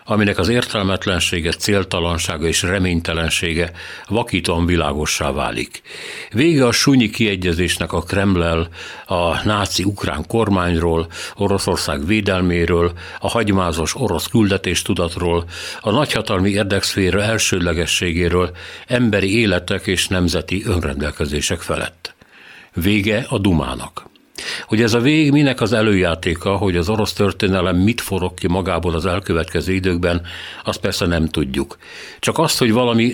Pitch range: 85-105 Hz